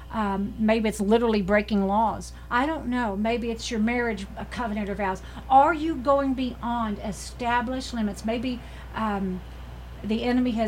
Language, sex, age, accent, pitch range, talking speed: English, female, 50-69, American, 200-245 Hz, 145 wpm